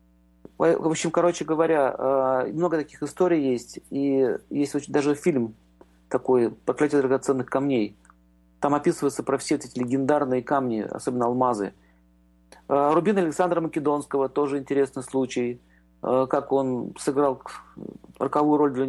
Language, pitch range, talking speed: Russian, 125-160 Hz, 120 wpm